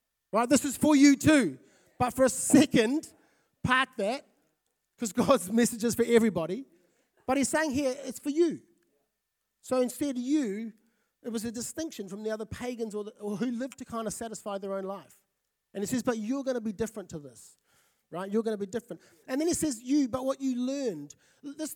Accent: Australian